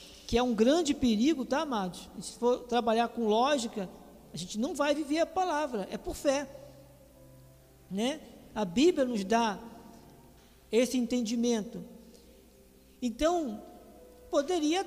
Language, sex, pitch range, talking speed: Portuguese, male, 225-300 Hz, 125 wpm